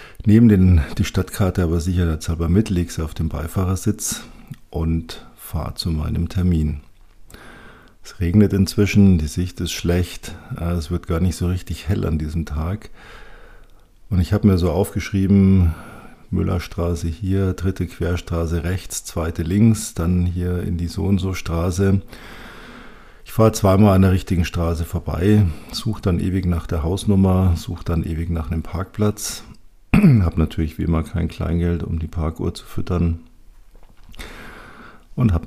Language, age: German, 50-69